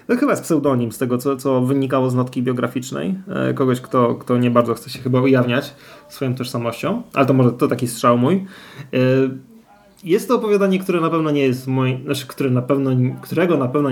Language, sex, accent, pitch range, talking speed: Polish, male, native, 130-170 Hz, 205 wpm